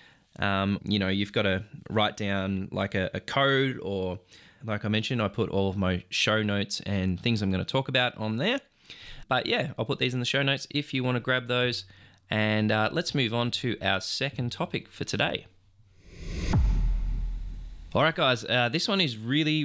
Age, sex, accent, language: 20-39, male, Australian, English